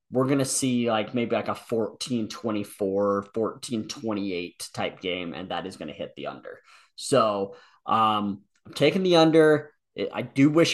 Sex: male